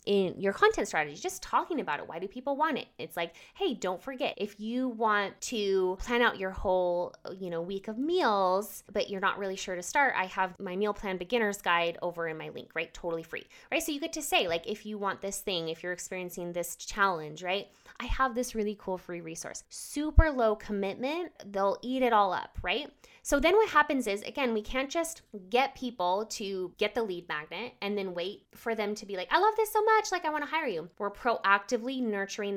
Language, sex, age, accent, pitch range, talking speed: English, female, 20-39, American, 180-240 Hz, 225 wpm